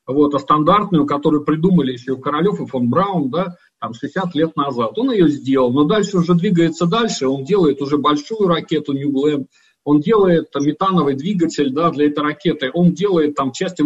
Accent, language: native, Russian